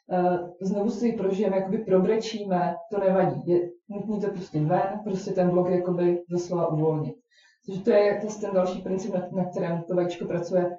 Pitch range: 175-200 Hz